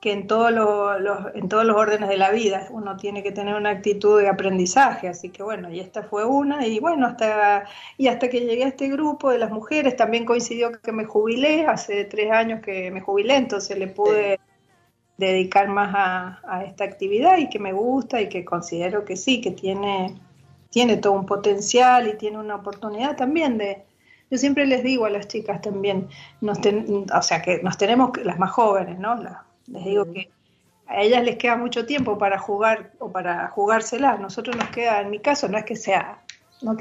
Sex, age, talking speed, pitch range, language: female, 40-59, 195 wpm, 200-245 Hz, Spanish